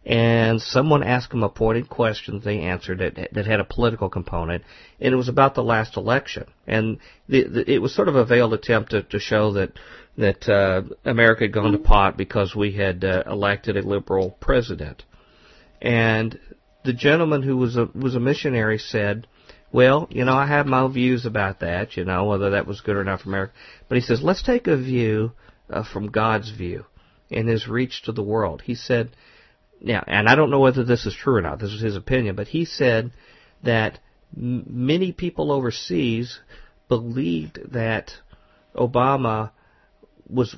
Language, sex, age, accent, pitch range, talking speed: English, male, 50-69, American, 105-130 Hz, 190 wpm